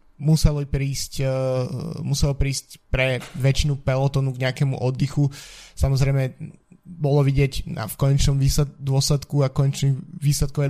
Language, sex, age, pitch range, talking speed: Slovak, male, 20-39, 130-140 Hz, 100 wpm